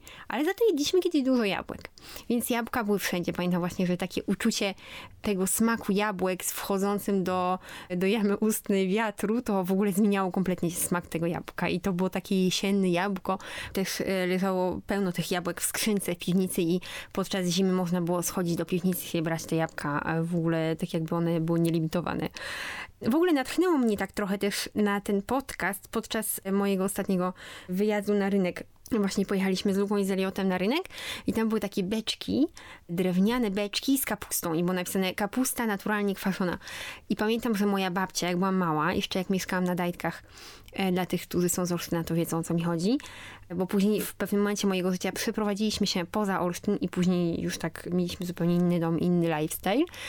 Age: 20-39